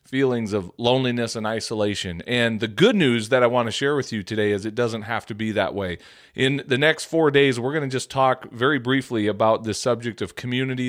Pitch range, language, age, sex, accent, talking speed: 110-135 Hz, English, 40-59, male, American, 230 wpm